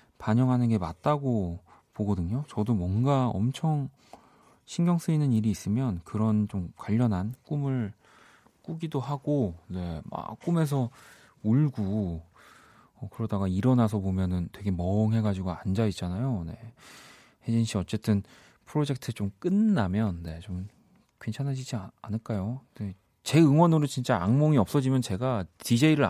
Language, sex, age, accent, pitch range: Korean, male, 40-59, native, 100-140 Hz